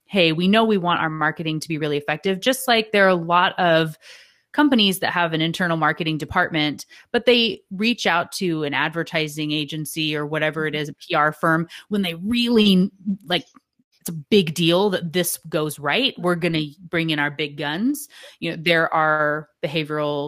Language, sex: English, female